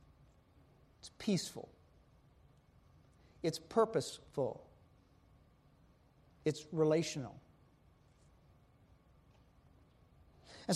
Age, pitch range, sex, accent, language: 50-69, 140-205 Hz, male, American, English